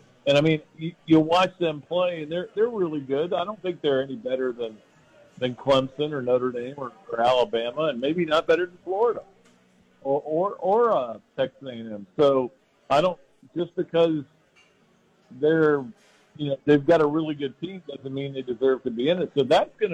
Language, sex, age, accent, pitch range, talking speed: English, male, 50-69, American, 125-160 Hz, 195 wpm